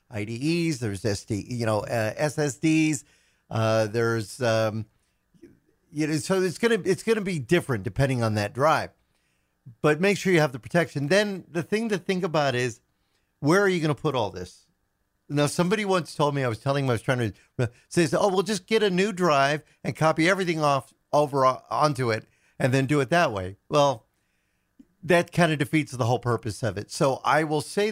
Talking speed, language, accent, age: 205 wpm, English, American, 50-69